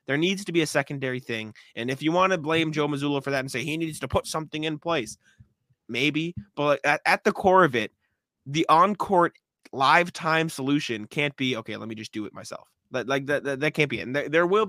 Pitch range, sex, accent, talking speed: 115-145 Hz, male, American, 240 wpm